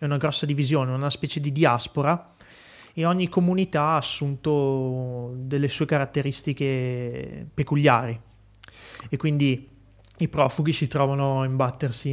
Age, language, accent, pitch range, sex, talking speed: 30-49, Italian, native, 125-145 Hz, male, 125 wpm